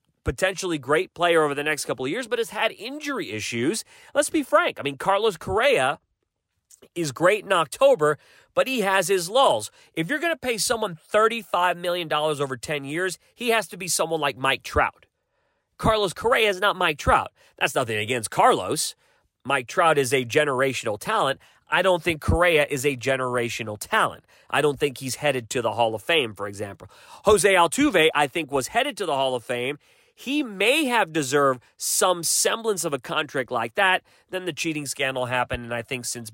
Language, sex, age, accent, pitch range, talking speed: English, male, 30-49, American, 130-195 Hz, 190 wpm